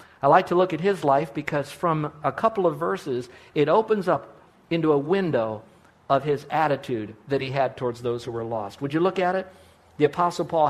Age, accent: 50-69, American